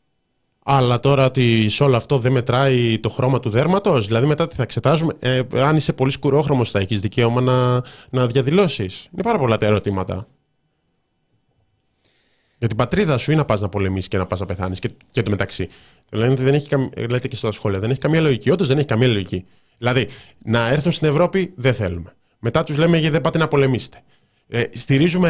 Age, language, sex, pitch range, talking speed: 20-39, Greek, male, 115-165 Hz, 185 wpm